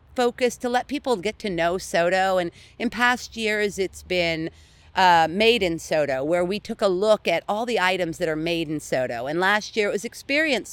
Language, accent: English, American